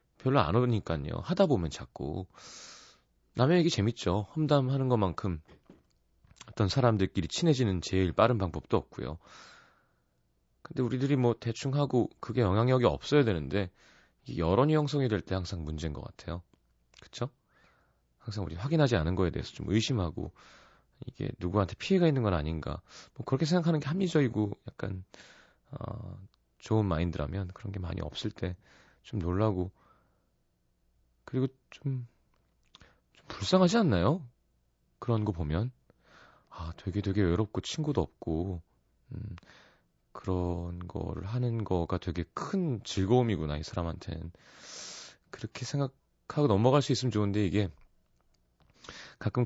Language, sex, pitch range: Korean, male, 85-130 Hz